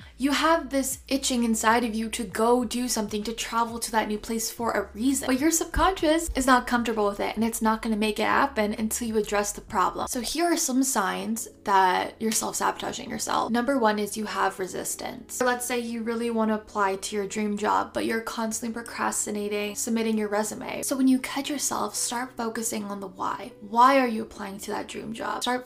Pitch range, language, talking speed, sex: 210-245 Hz, English, 215 wpm, female